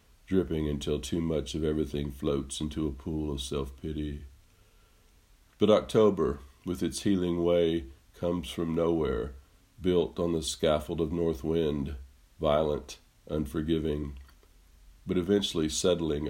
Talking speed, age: 120 wpm, 50-69